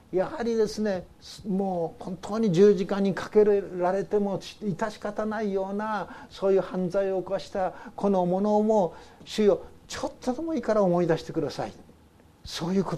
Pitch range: 145-210 Hz